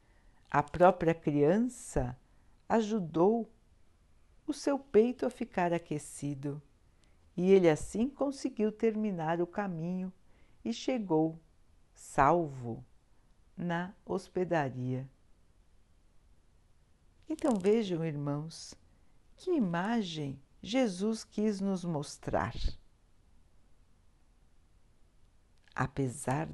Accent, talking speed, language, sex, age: Brazilian, 70 wpm, Portuguese, female, 60-79